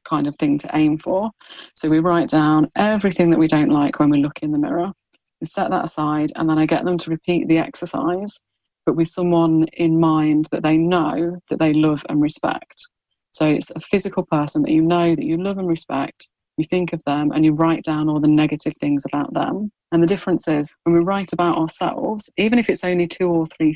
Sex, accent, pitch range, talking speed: female, British, 155-180 Hz, 225 wpm